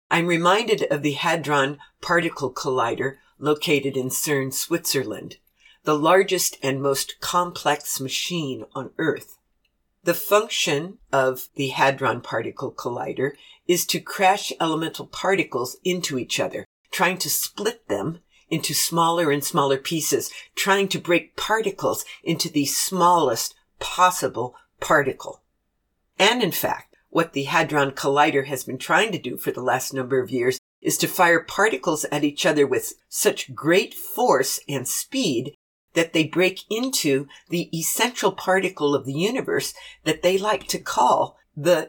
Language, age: English, 50-69